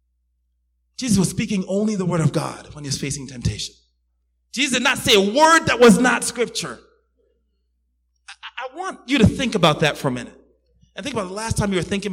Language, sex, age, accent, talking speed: English, male, 30-49, American, 215 wpm